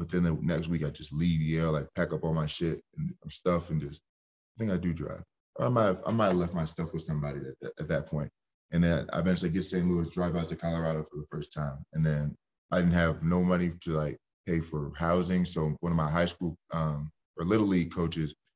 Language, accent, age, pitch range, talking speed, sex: English, American, 20-39, 75-85 Hz, 245 wpm, male